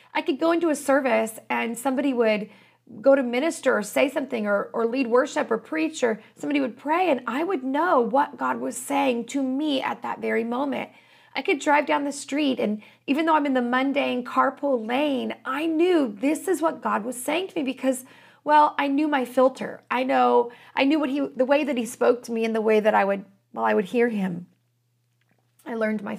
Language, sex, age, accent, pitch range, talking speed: English, female, 30-49, American, 230-285 Hz, 220 wpm